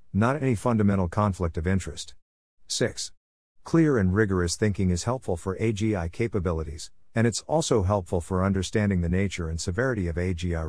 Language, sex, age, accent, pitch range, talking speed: English, male, 50-69, American, 85-115 Hz, 155 wpm